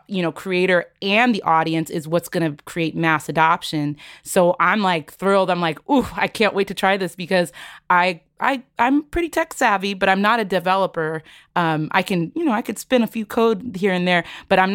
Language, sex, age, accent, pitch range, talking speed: English, female, 30-49, American, 160-195 Hz, 220 wpm